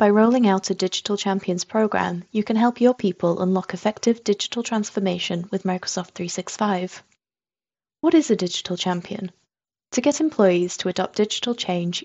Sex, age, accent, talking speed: female, 20-39, British, 155 wpm